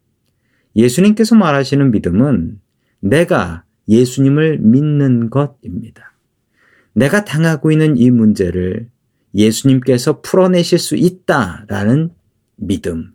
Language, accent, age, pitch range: Korean, native, 40-59, 110-155 Hz